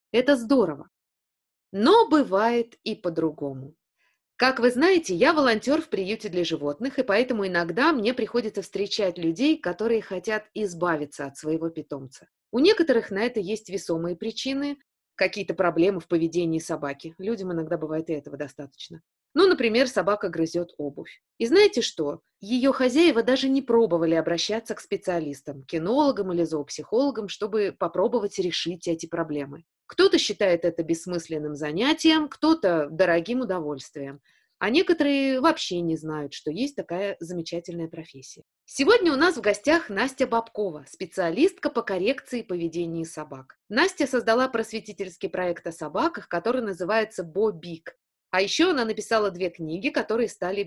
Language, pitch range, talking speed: Russian, 165-250 Hz, 140 wpm